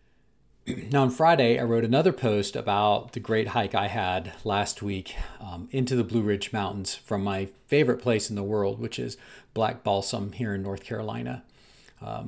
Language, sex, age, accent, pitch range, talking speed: English, male, 40-59, American, 105-130 Hz, 180 wpm